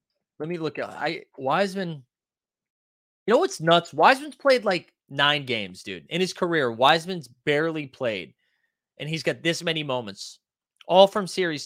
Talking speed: 155 wpm